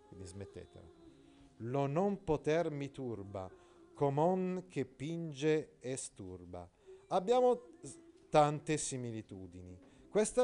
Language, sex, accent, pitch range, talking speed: Italian, male, native, 115-185 Hz, 85 wpm